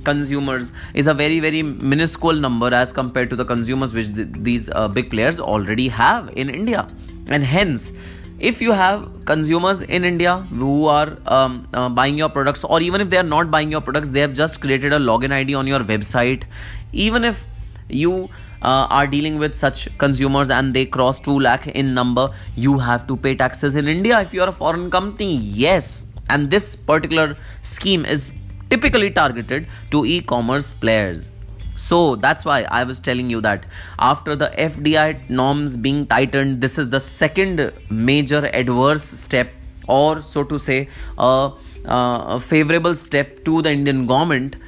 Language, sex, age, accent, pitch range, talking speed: English, male, 20-39, Indian, 120-150 Hz, 175 wpm